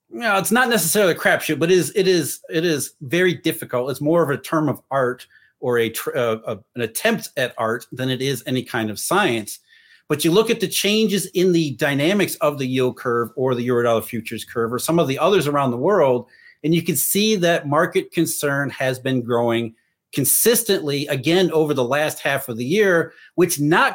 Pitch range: 130-175 Hz